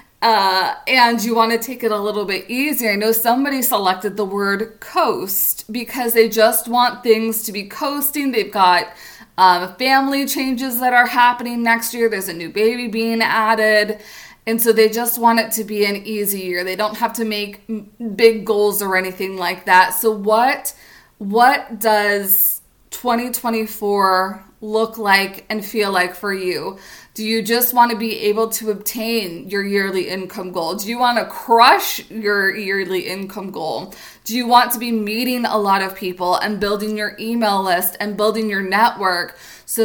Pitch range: 200-230 Hz